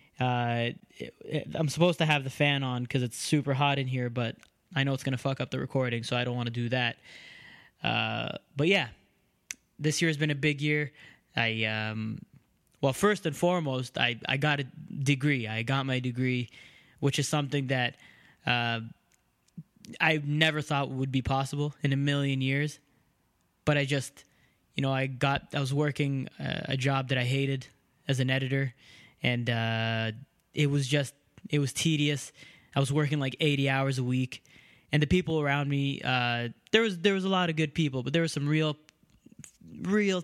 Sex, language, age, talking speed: male, English, 20-39, 190 wpm